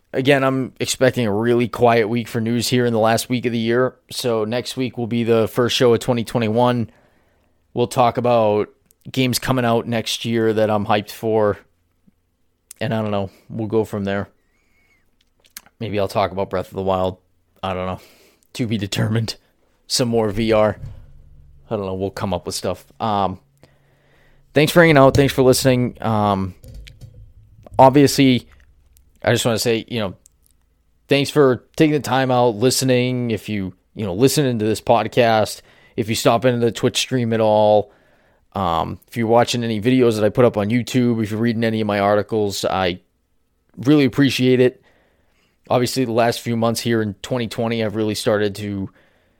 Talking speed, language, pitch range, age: 180 wpm, English, 100-125 Hz, 20-39